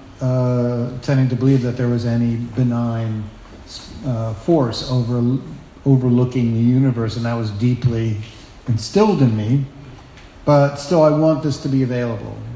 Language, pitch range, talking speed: English, 115-135 Hz, 145 wpm